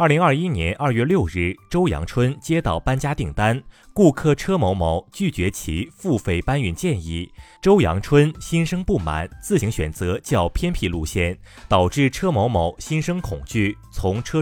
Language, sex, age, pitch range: Chinese, male, 30-49, 90-140 Hz